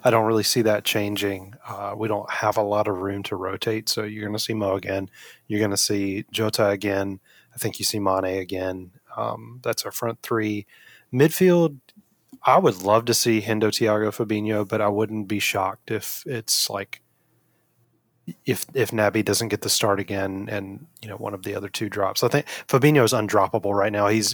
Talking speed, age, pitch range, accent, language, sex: 205 wpm, 30-49, 100-115 Hz, American, English, male